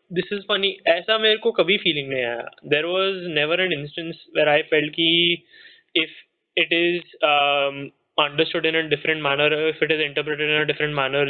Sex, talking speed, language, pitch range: male, 150 wpm, Hindi, 150-195 Hz